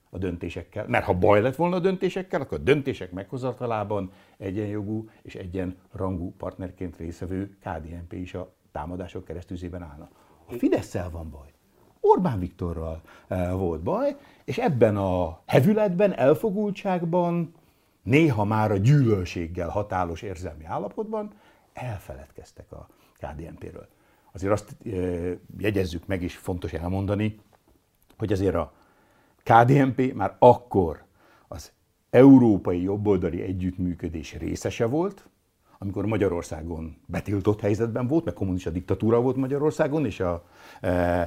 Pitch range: 90-120 Hz